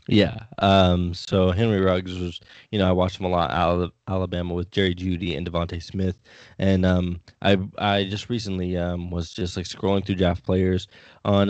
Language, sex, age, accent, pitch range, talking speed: English, male, 20-39, American, 90-95 Hz, 195 wpm